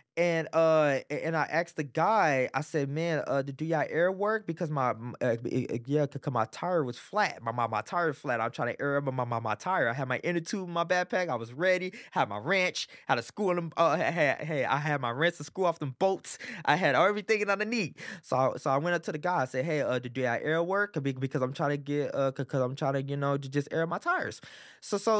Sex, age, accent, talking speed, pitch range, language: male, 20-39, American, 270 wpm, 145-210 Hz, English